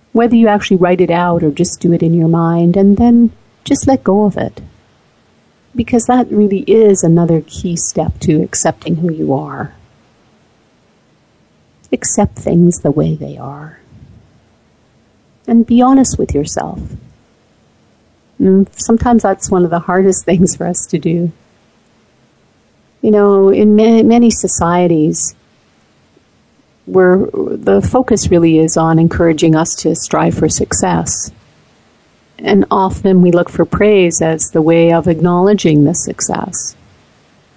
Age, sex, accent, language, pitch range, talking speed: 50-69, female, American, English, 165-200 Hz, 135 wpm